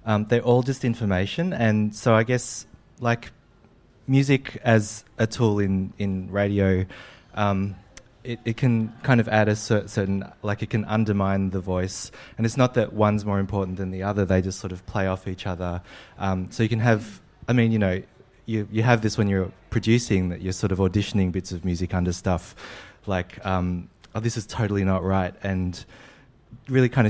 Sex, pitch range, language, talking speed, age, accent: male, 95-110 Hz, English, 195 wpm, 20-39, Australian